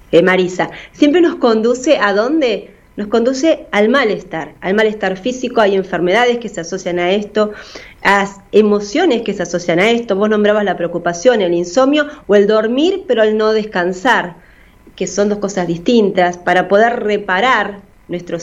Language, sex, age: Spanish, female, 30-49